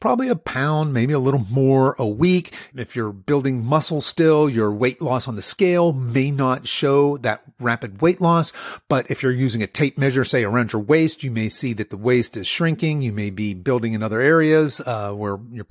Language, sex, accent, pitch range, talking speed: English, male, American, 120-160 Hz, 215 wpm